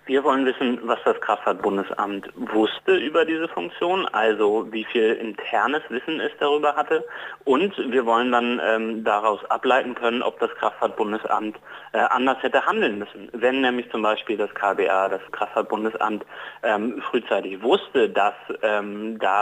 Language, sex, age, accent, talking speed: German, male, 30-49, German, 150 wpm